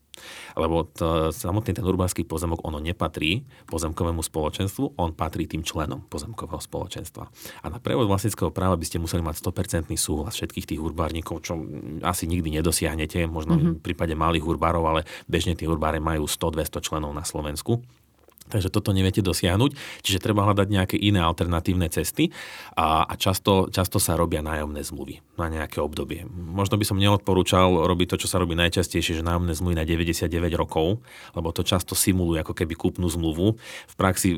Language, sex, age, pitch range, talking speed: Slovak, male, 30-49, 80-95 Hz, 170 wpm